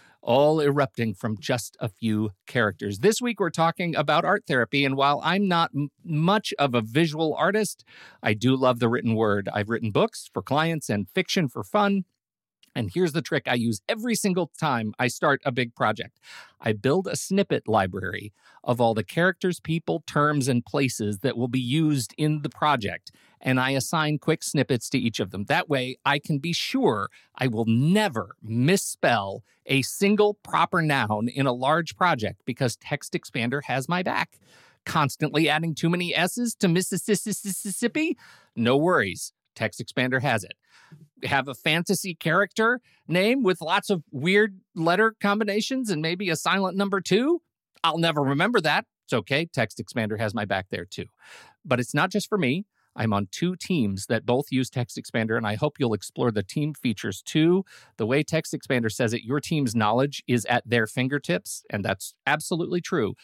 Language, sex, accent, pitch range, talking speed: English, male, American, 120-175 Hz, 180 wpm